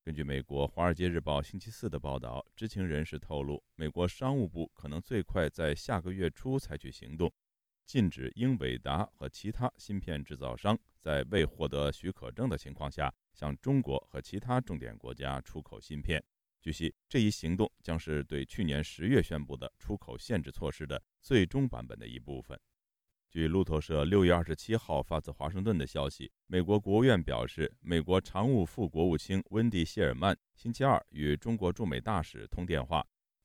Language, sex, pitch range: Chinese, male, 70-100 Hz